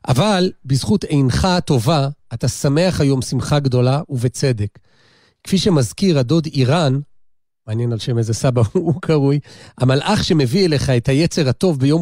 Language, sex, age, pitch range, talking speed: Hebrew, male, 40-59, 130-170 Hz, 140 wpm